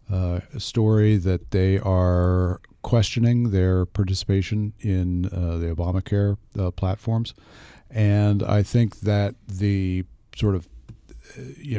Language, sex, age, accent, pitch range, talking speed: English, male, 40-59, American, 90-110 Hz, 115 wpm